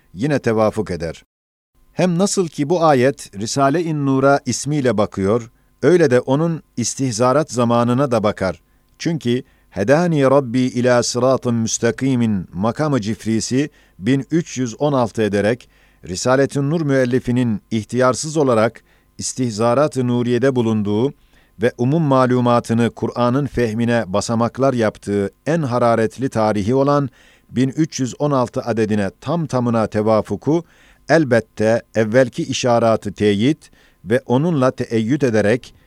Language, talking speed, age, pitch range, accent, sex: Turkish, 100 wpm, 50-69, 110-140 Hz, native, male